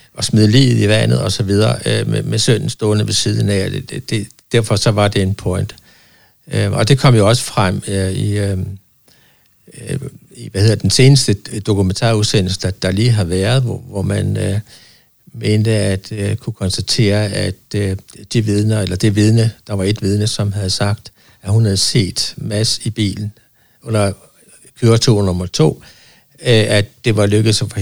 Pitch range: 100-115 Hz